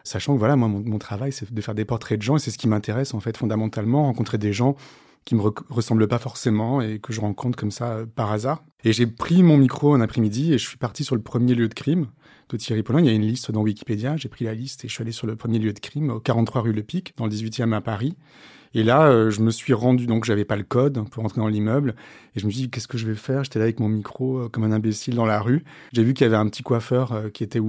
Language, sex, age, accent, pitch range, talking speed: French, male, 30-49, French, 110-130 Hz, 310 wpm